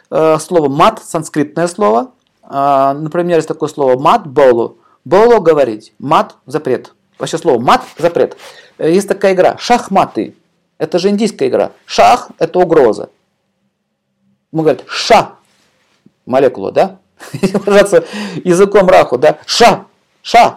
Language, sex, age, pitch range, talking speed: Russian, male, 50-69, 160-210 Hz, 115 wpm